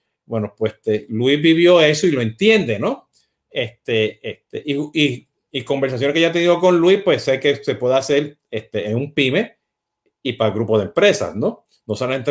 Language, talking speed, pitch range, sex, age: Spanish, 200 wpm, 130-180 Hz, male, 50-69